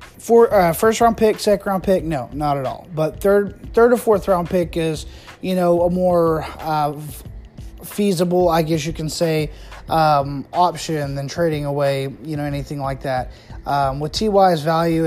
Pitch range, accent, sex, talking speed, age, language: 145-185 Hz, American, male, 180 wpm, 20-39, English